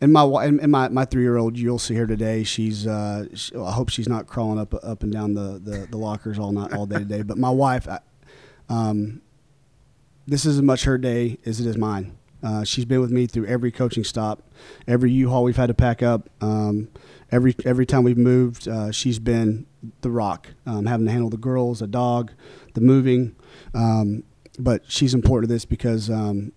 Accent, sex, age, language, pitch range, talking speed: American, male, 30-49, English, 105-125 Hz, 205 wpm